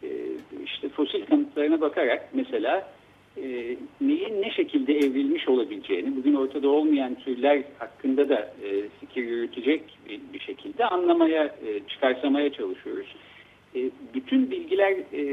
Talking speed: 100 wpm